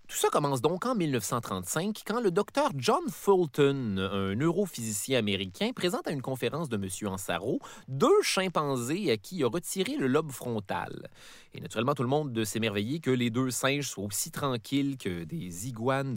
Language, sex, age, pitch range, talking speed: French, male, 30-49, 115-195 Hz, 180 wpm